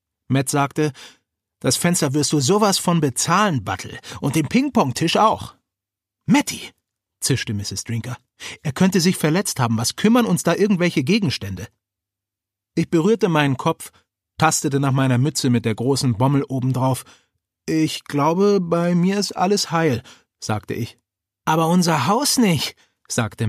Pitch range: 120-170 Hz